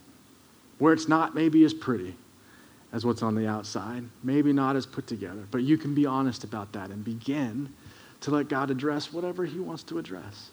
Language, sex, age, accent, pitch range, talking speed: English, male, 40-59, American, 115-140 Hz, 195 wpm